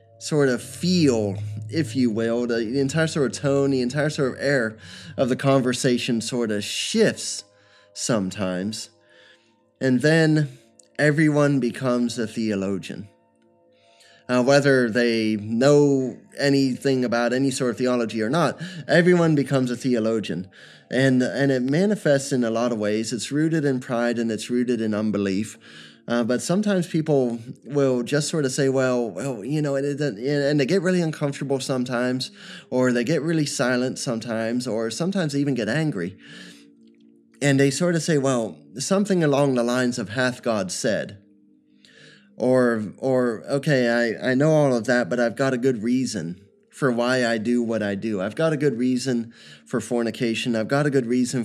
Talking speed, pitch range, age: 165 wpm, 115-140 Hz, 20-39